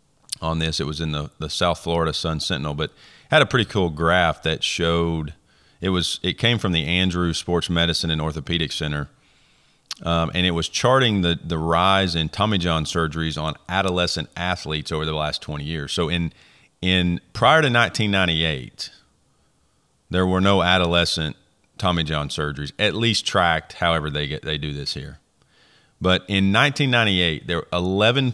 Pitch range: 80-95 Hz